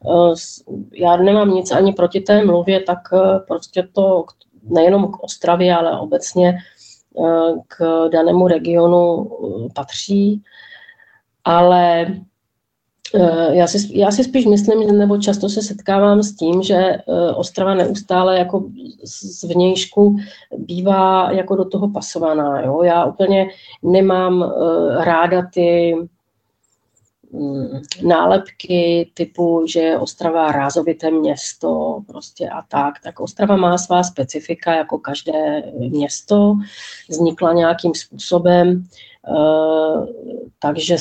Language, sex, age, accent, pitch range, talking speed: Czech, female, 40-59, native, 165-190 Hz, 105 wpm